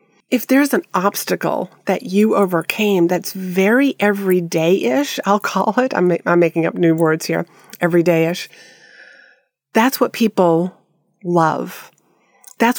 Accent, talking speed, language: American, 120 wpm, English